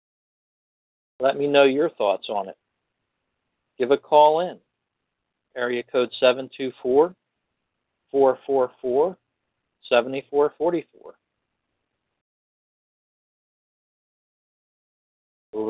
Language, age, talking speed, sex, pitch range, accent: English, 60-79, 55 wpm, male, 110-130 Hz, American